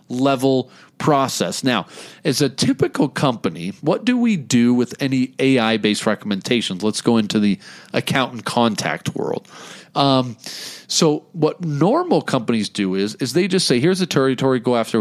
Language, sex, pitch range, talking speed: English, male, 105-155 Hz, 160 wpm